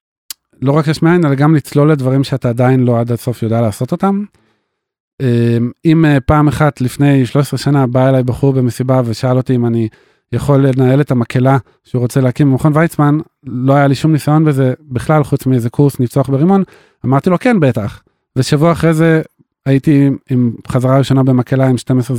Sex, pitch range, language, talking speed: male, 125-150 Hz, Hebrew, 175 wpm